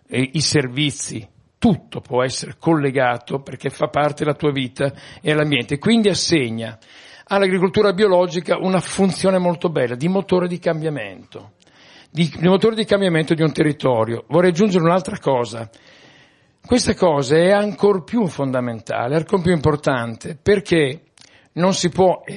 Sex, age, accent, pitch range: male, 60-79, native, 130-180 Hz